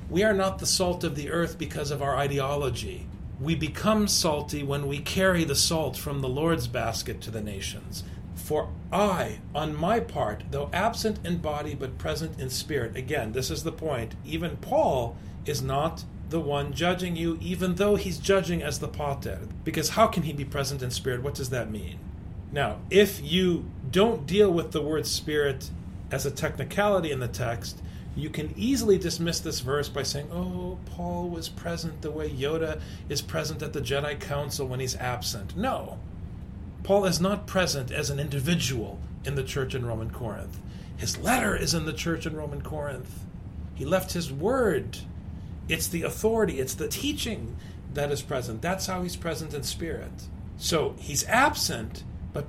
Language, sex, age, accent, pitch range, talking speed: English, male, 40-59, American, 110-175 Hz, 180 wpm